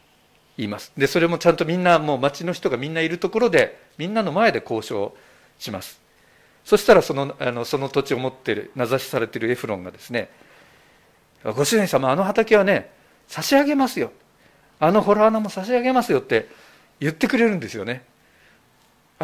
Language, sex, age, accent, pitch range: Japanese, male, 50-69, native, 140-215 Hz